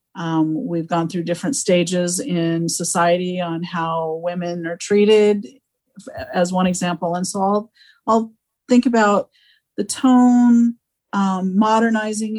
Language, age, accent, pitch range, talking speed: English, 40-59, American, 170-220 Hz, 125 wpm